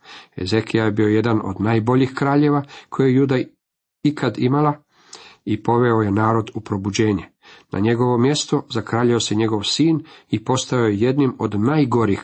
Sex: male